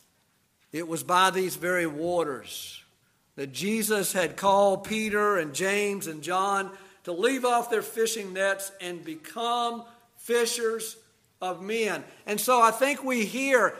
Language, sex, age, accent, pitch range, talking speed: English, male, 50-69, American, 175-230 Hz, 140 wpm